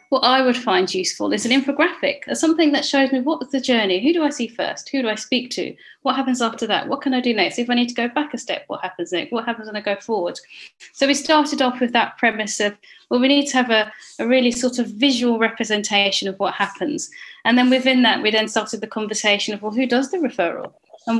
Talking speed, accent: 255 wpm, British